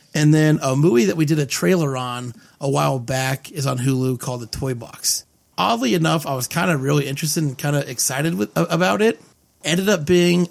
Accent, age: American, 30-49